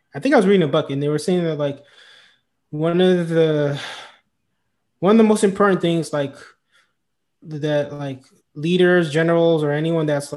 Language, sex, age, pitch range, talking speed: English, male, 20-39, 140-170 Hz, 175 wpm